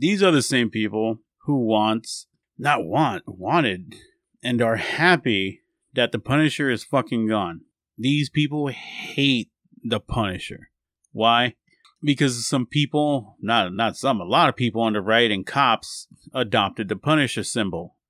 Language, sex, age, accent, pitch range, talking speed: English, male, 30-49, American, 110-140 Hz, 145 wpm